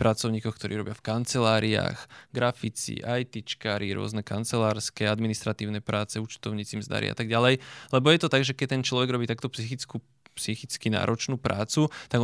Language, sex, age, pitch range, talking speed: Slovak, male, 20-39, 115-130 Hz, 145 wpm